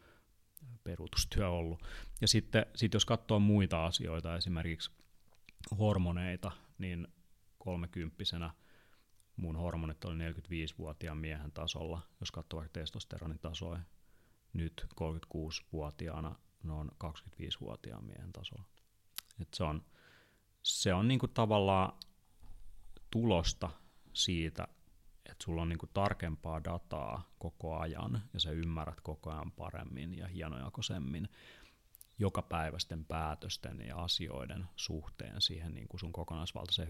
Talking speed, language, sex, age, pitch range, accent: 105 wpm, Finnish, male, 30-49, 80-100 Hz, native